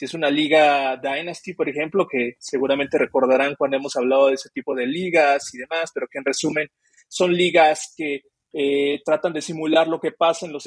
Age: 30-49